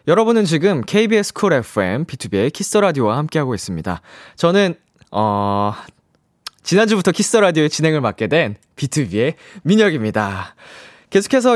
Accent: native